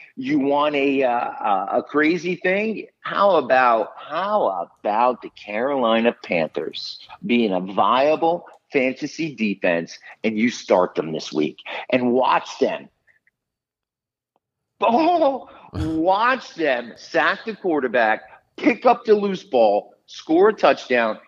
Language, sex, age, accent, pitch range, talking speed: English, male, 50-69, American, 125-195 Hz, 120 wpm